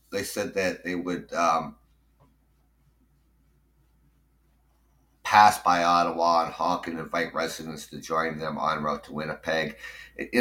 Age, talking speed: 60-79, 125 wpm